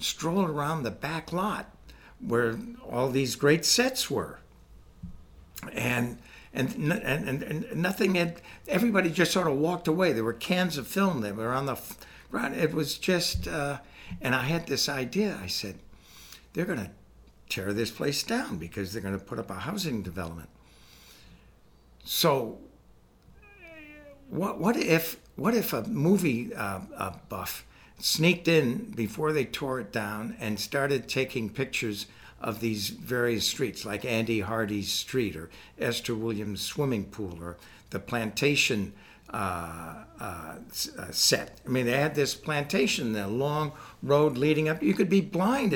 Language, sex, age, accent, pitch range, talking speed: English, male, 60-79, American, 105-170 Hz, 150 wpm